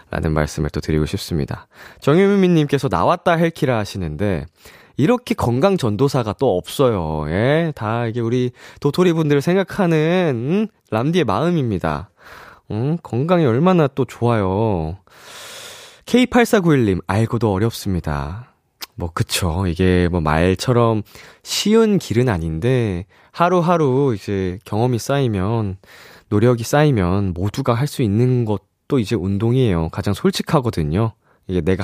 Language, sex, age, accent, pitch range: Korean, male, 20-39, native, 95-155 Hz